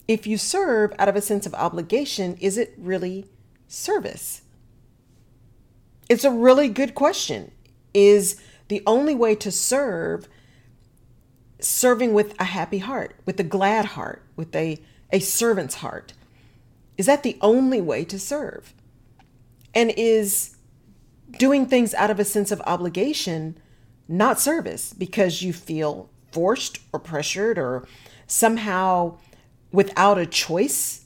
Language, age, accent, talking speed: English, 40-59, American, 130 wpm